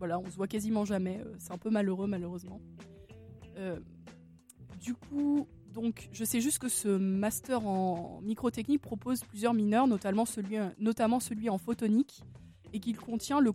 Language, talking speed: French, 160 wpm